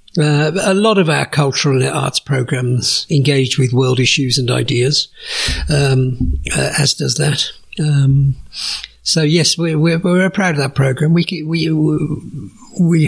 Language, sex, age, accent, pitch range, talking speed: German, male, 60-79, British, 130-160 Hz, 150 wpm